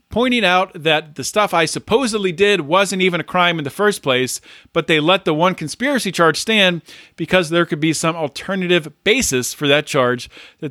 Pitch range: 150-185 Hz